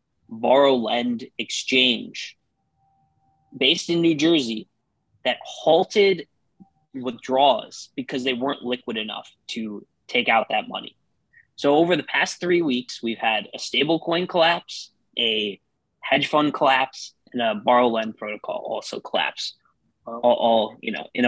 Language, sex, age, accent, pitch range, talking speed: English, male, 20-39, American, 125-165 Hz, 135 wpm